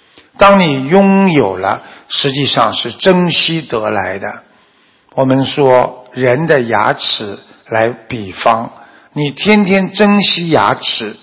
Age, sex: 60-79, male